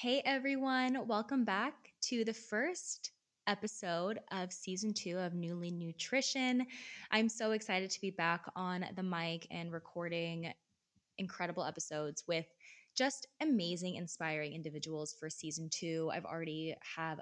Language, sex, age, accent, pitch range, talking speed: English, female, 20-39, American, 160-210 Hz, 130 wpm